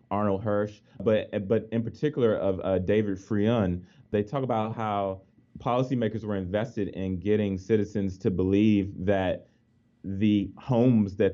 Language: English